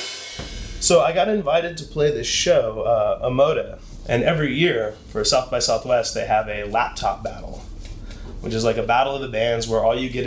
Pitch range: 105-130 Hz